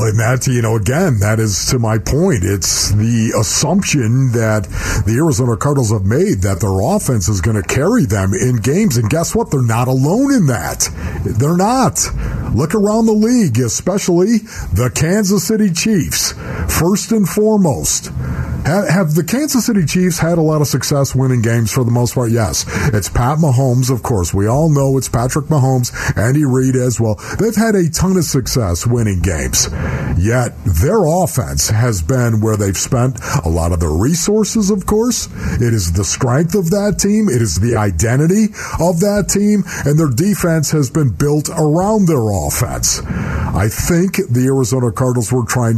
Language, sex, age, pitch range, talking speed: English, male, 50-69, 105-155 Hz, 175 wpm